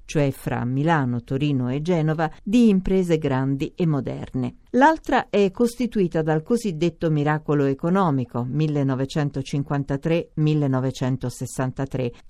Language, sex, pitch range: Italian, female, 140-190 Hz